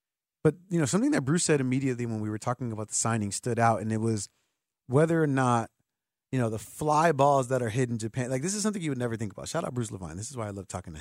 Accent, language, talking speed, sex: American, English, 290 wpm, male